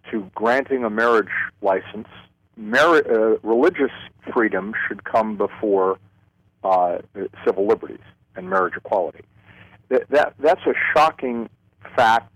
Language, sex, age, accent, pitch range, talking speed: English, male, 50-69, American, 100-120 Hz, 115 wpm